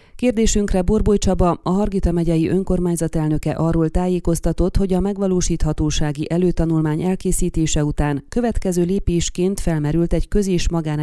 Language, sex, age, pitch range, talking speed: Hungarian, female, 30-49, 155-190 Hz, 120 wpm